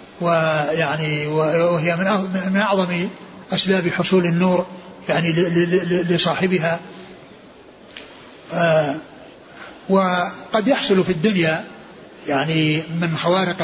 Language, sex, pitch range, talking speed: Arabic, male, 170-195 Hz, 70 wpm